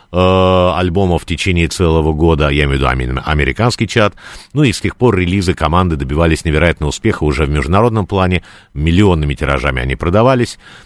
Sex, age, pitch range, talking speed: male, 50-69, 75-105 Hz, 160 wpm